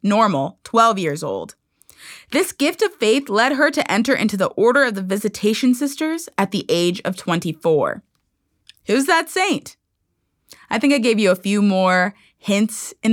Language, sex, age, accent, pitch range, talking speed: English, female, 20-39, American, 195-265 Hz, 170 wpm